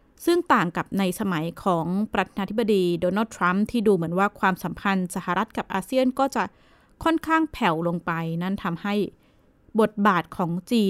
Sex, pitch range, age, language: female, 185-245 Hz, 20-39, Thai